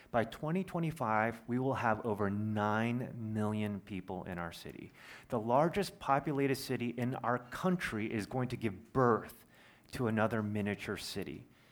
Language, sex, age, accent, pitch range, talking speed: English, male, 30-49, American, 100-125 Hz, 145 wpm